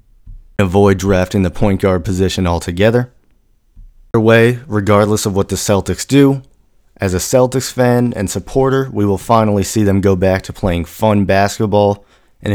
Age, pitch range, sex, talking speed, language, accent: 30-49, 95-110 Hz, male, 160 wpm, English, American